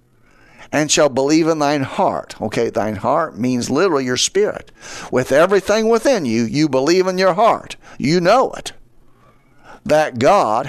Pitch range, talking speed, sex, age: 115-165 Hz, 150 wpm, male, 50-69